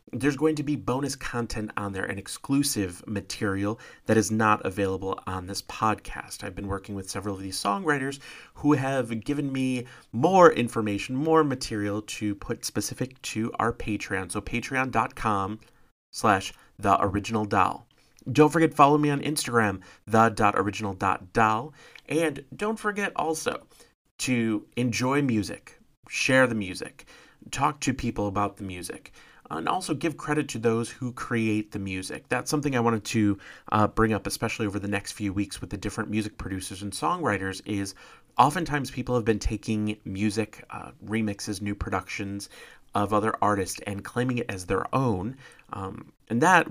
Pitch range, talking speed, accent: 100-130 Hz, 155 wpm, American